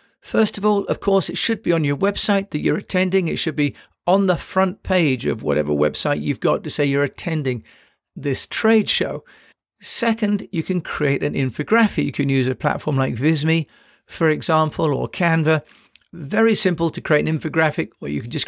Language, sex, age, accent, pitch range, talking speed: English, male, 50-69, British, 145-185 Hz, 195 wpm